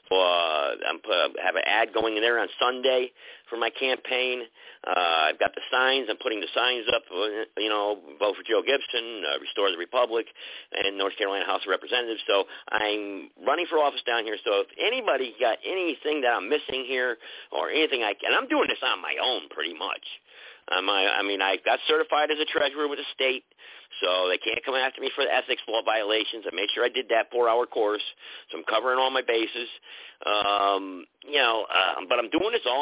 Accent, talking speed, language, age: American, 210 wpm, English, 50-69